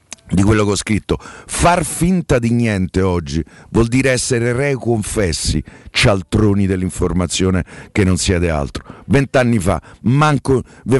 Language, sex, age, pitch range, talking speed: Italian, male, 50-69, 95-125 Hz, 130 wpm